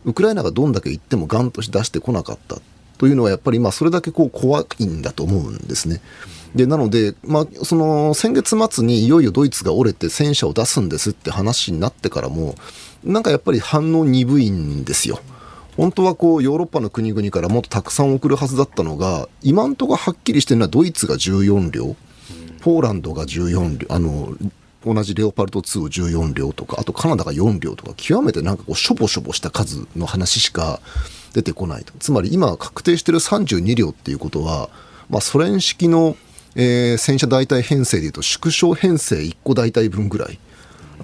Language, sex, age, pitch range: Japanese, male, 40-59, 100-145 Hz